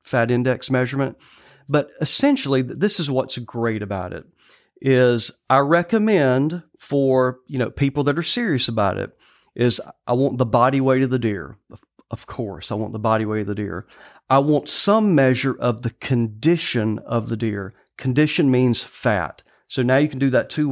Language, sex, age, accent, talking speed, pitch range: English, male, 40-59, American, 180 wpm, 115-150 Hz